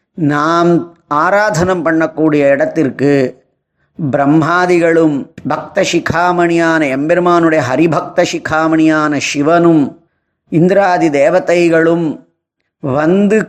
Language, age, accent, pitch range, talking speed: Tamil, 20-39, native, 145-175 Hz, 60 wpm